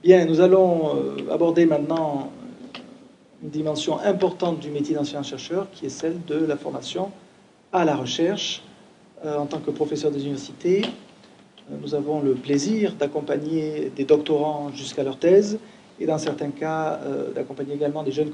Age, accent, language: 40-59, French, French